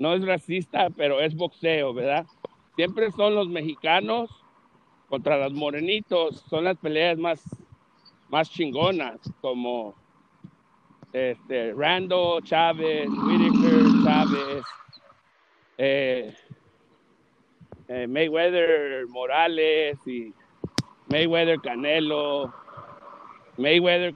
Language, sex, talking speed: Spanish, male, 85 wpm